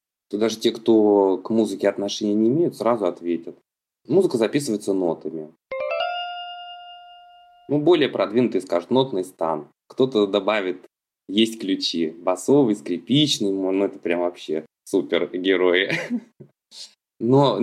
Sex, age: male, 20-39